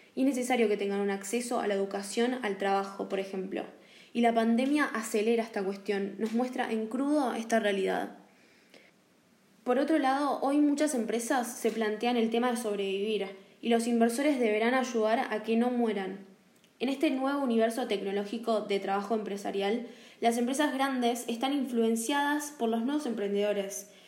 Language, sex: Spanish, female